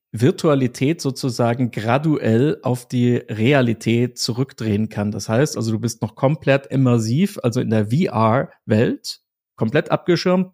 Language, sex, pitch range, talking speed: German, male, 115-145 Hz, 125 wpm